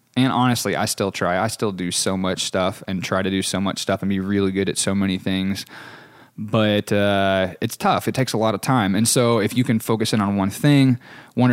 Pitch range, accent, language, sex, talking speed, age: 100-115 Hz, American, English, male, 245 wpm, 20-39